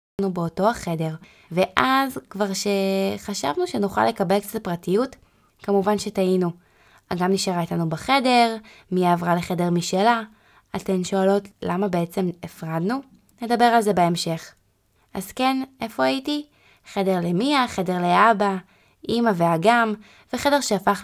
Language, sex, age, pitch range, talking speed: Hebrew, female, 20-39, 170-220 Hz, 115 wpm